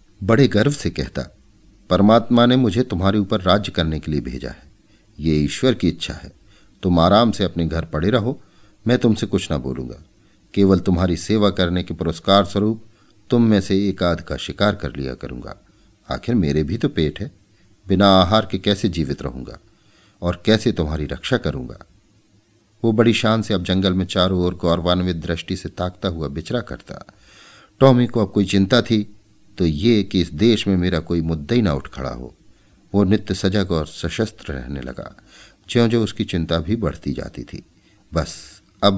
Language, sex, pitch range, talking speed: Hindi, male, 85-105 Hz, 185 wpm